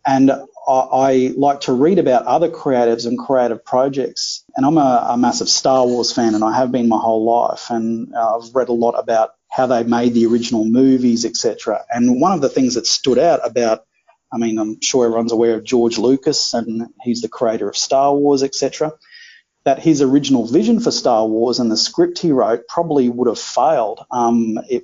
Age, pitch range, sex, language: 30-49, 115-150 Hz, male, English